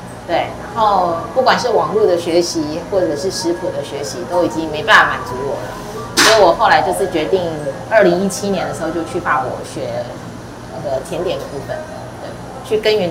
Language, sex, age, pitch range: Chinese, female, 30-49, 160-215 Hz